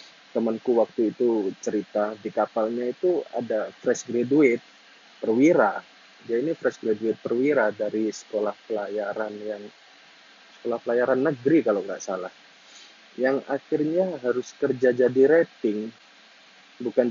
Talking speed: 115 wpm